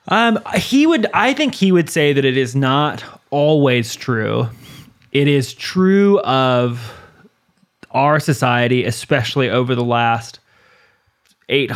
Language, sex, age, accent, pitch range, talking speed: English, male, 20-39, American, 125-150 Hz, 130 wpm